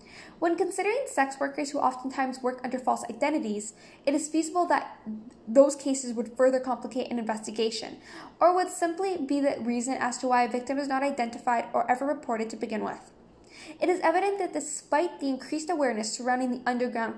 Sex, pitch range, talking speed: female, 245-310 Hz, 180 wpm